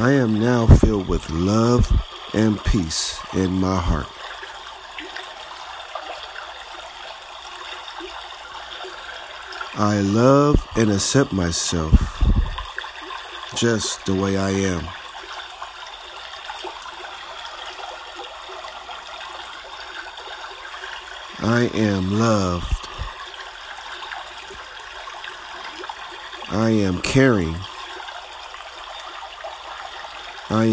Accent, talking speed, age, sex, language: American, 55 wpm, 50-69, male, English